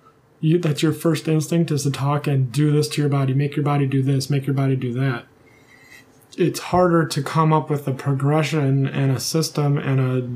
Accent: American